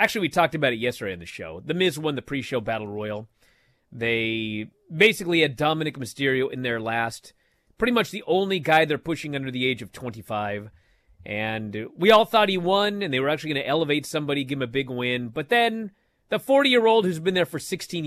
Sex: male